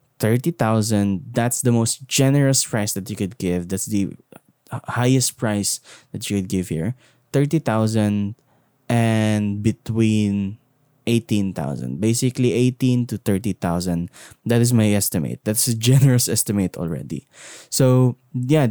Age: 20-39